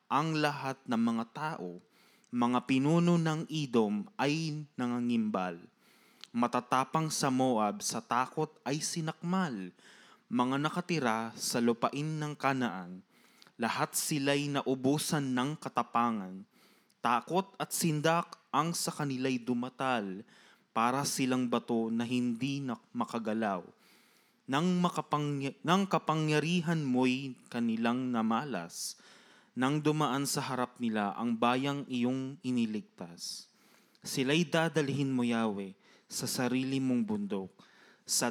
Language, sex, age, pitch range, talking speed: Filipino, male, 20-39, 120-155 Hz, 105 wpm